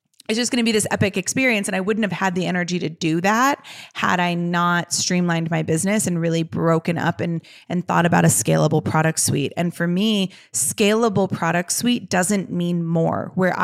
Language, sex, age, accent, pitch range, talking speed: English, female, 20-39, American, 165-195 Hz, 200 wpm